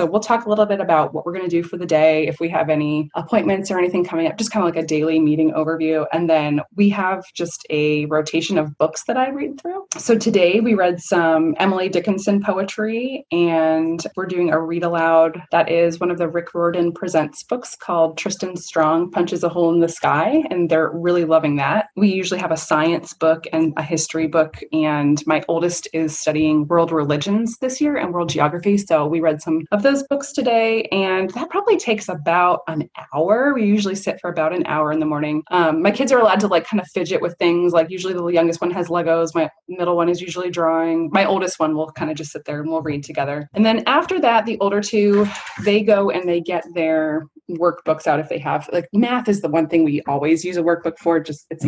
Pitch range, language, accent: 160-200 Hz, English, American